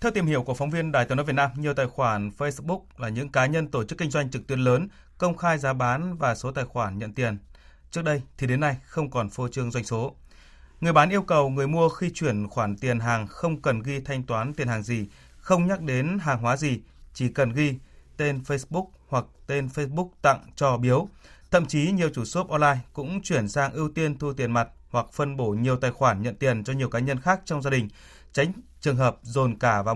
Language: Vietnamese